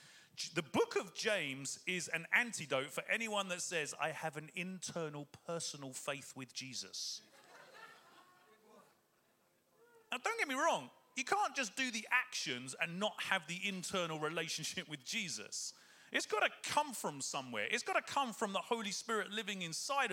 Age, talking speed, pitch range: 30-49, 160 wpm, 165-255 Hz